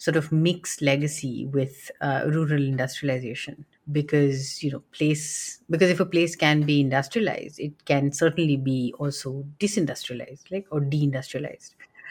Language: English